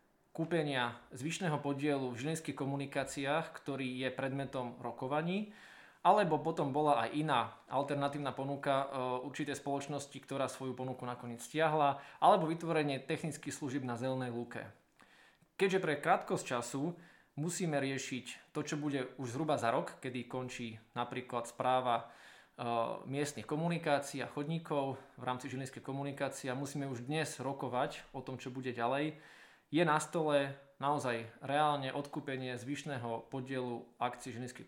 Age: 20-39